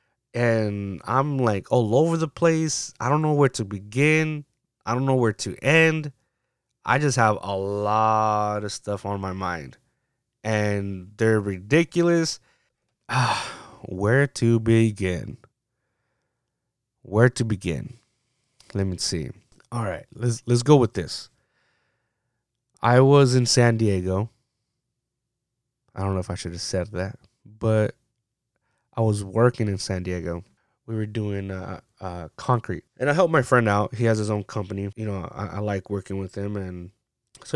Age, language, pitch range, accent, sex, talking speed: 20-39, English, 100-125 Hz, American, male, 155 wpm